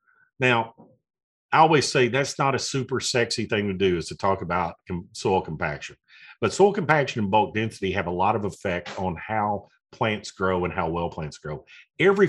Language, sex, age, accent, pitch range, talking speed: English, male, 50-69, American, 95-135 Hz, 190 wpm